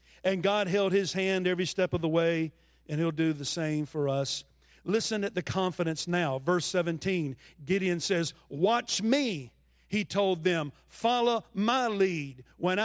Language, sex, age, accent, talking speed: English, male, 50-69, American, 165 wpm